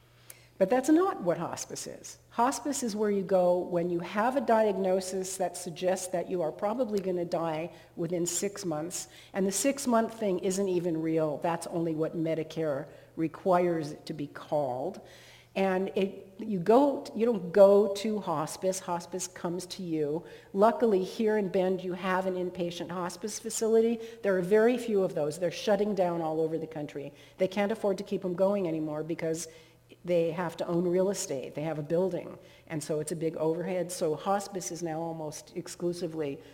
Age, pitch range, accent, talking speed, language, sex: 50-69, 160-200 Hz, American, 180 wpm, English, female